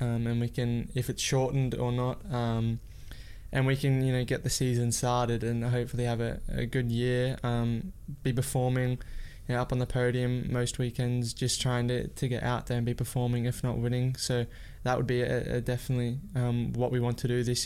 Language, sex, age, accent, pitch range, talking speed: English, male, 20-39, Australian, 120-130 Hz, 220 wpm